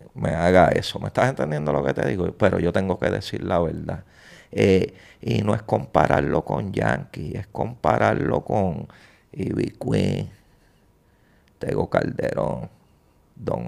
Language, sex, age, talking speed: English, male, 50-69, 140 wpm